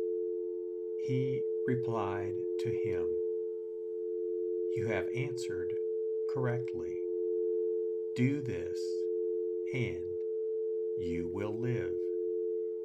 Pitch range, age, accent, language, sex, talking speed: 90-110 Hz, 50-69, American, English, male, 65 wpm